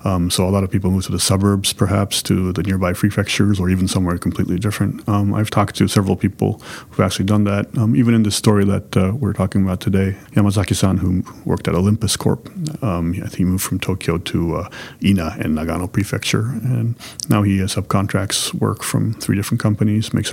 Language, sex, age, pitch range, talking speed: English, male, 30-49, 95-110 Hz, 205 wpm